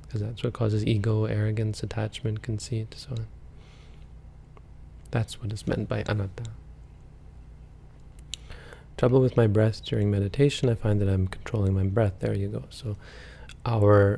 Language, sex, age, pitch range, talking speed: English, male, 20-39, 100-120 Hz, 140 wpm